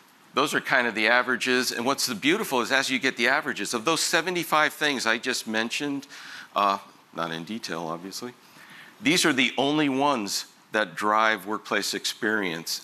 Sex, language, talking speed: male, English, 175 wpm